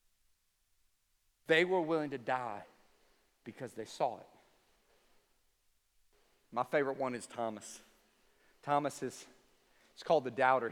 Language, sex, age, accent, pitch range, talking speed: English, male, 40-59, American, 130-180 Hz, 110 wpm